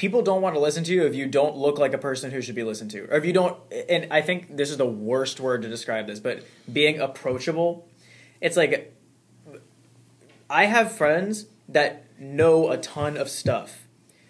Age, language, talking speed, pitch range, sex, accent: 20-39, English, 200 wpm, 125-160 Hz, male, American